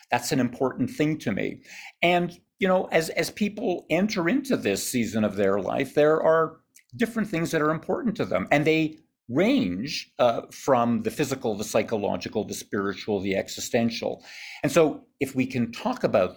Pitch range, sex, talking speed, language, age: 115-155 Hz, male, 175 wpm, English, 50-69